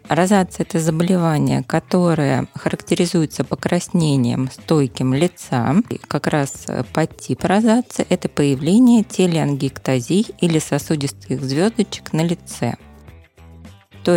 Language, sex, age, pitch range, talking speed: Russian, female, 20-39, 145-180 Hz, 95 wpm